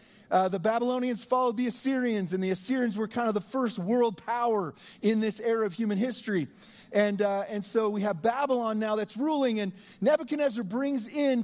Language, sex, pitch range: English, male, 205-250 Hz